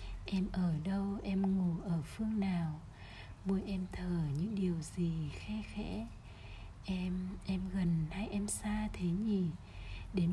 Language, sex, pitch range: Vietnamese, female, 150-195 Hz